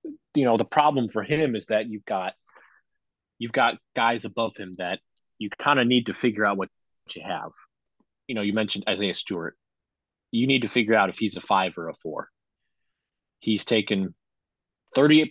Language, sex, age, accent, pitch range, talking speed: English, male, 30-49, American, 100-125 Hz, 185 wpm